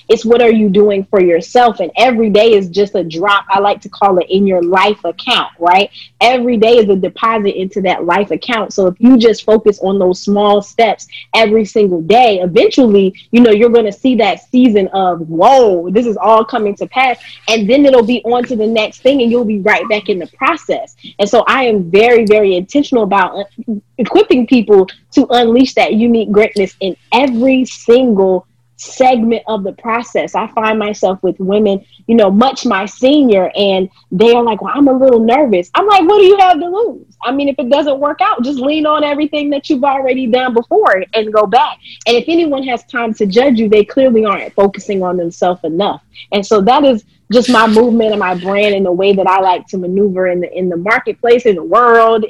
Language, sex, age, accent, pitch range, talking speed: English, female, 20-39, American, 195-245 Hz, 215 wpm